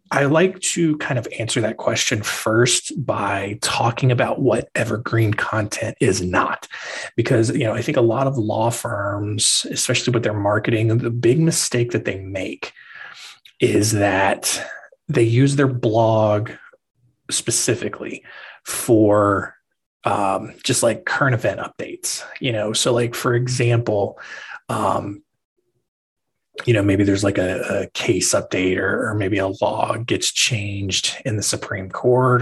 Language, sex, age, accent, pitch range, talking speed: English, male, 20-39, American, 105-125 Hz, 145 wpm